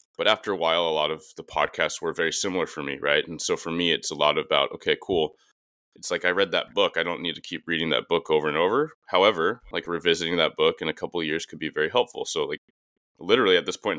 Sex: male